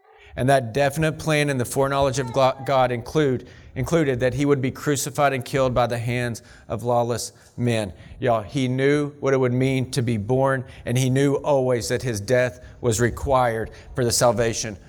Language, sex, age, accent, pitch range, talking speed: English, male, 40-59, American, 110-135 Hz, 180 wpm